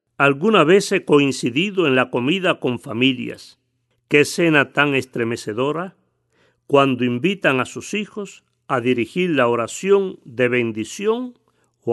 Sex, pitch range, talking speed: male, 120-170 Hz, 125 wpm